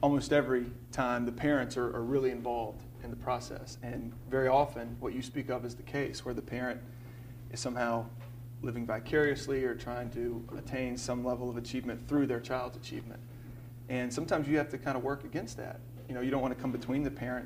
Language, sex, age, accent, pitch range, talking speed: English, male, 30-49, American, 120-130 Hz, 210 wpm